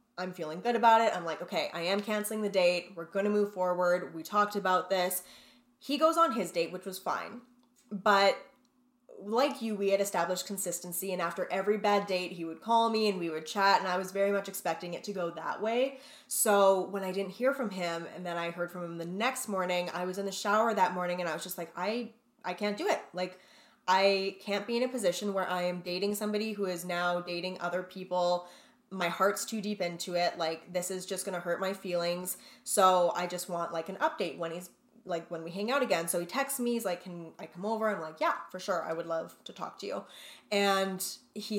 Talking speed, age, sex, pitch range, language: 240 wpm, 10-29, female, 180-215 Hz, English